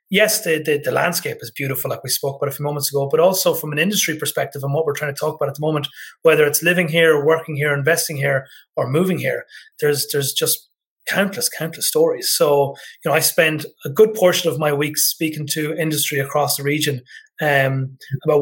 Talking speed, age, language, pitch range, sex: 220 wpm, 30-49, English, 140-165 Hz, male